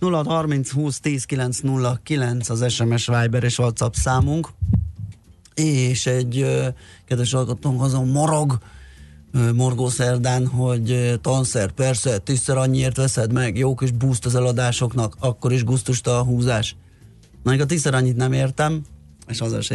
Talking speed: 130 wpm